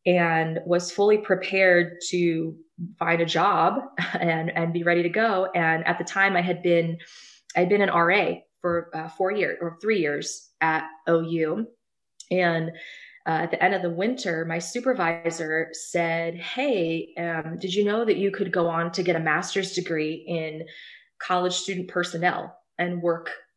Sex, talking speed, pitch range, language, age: female, 165 wpm, 165-190 Hz, English, 20-39